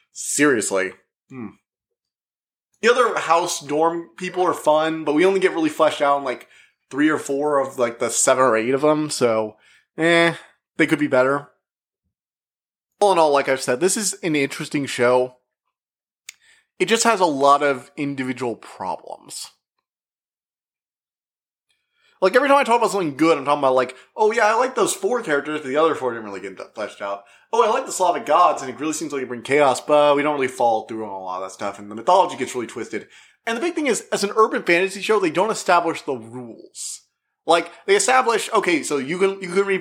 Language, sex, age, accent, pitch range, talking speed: English, male, 20-39, American, 125-180 Hz, 210 wpm